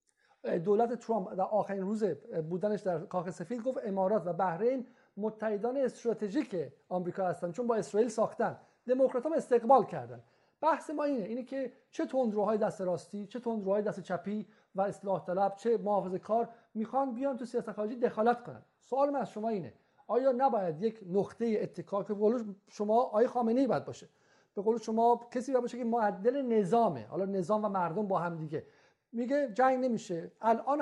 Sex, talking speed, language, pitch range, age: male, 170 wpm, Persian, 205-250 Hz, 50-69